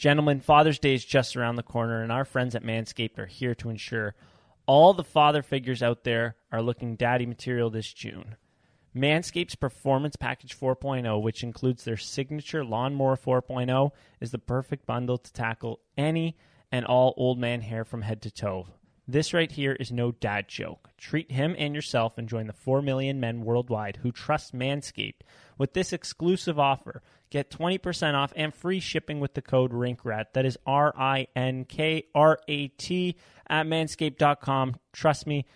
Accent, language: American, English